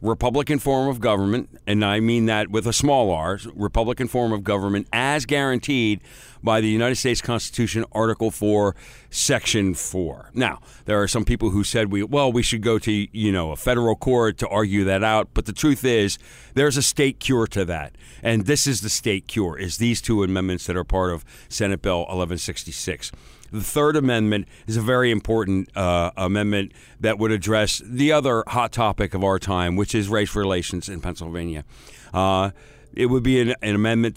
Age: 50-69